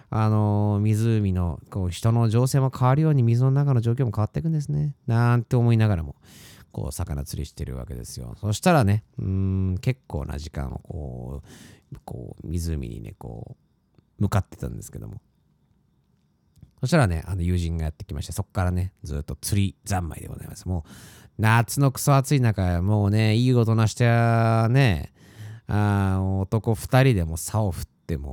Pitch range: 90-135 Hz